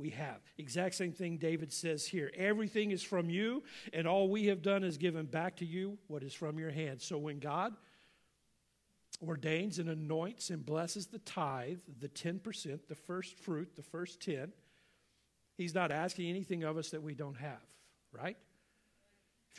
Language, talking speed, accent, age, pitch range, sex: English, 175 wpm, American, 50-69, 150-180 Hz, male